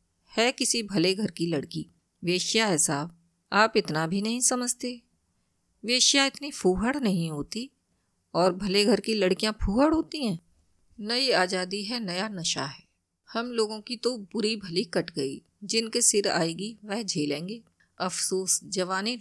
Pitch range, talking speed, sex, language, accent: 175-225 Hz, 150 wpm, female, Hindi, native